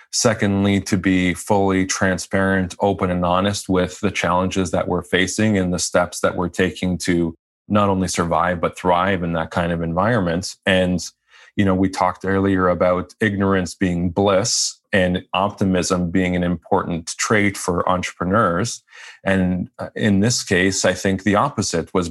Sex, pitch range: male, 90-100 Hz